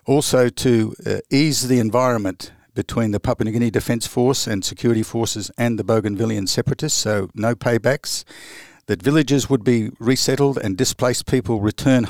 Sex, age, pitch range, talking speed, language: male, 60-79, 110-130 Hz, 160 wpm, English